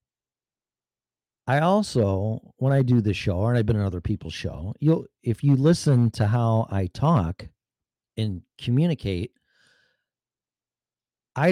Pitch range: 100-135 Hz